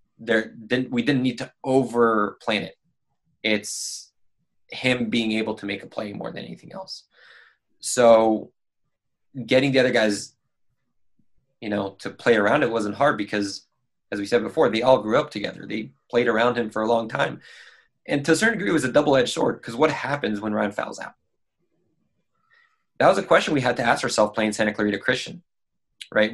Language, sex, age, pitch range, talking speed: English, male, 20-39, 105-125 Hz, 190 wpm